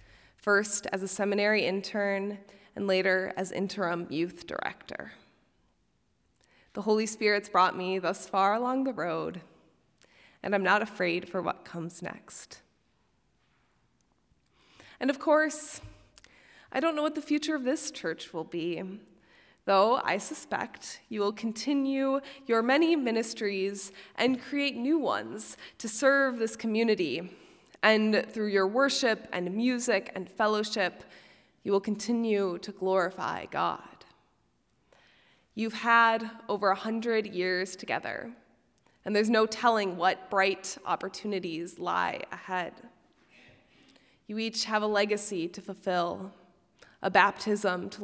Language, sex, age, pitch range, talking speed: English, female, 20-39, 185-230 Hz, 125 wpm